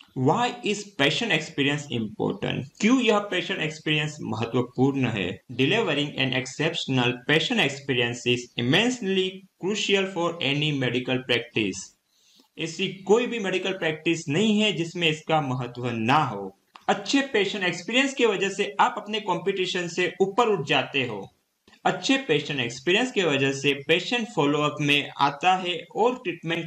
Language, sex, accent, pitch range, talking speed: Hindi, male, native, 135-190 Hz, 135 wpm